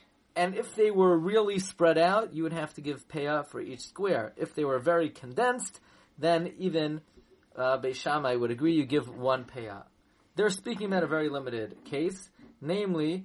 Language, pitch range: English, 135-185 Hz